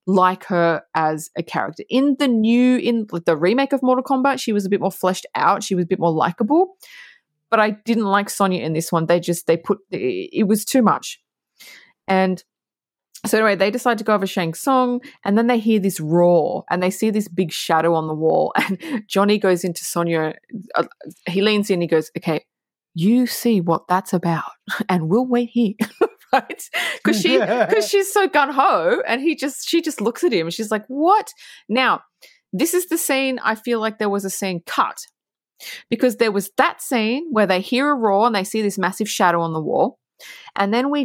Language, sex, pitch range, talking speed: English, female, 175-245 Hz, 210 wpm